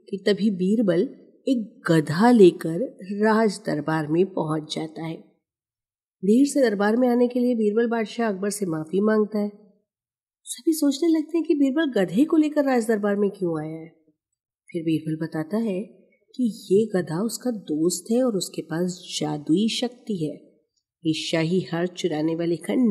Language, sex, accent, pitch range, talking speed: Hindi, female, native, 170-235 Hz, 160 wpm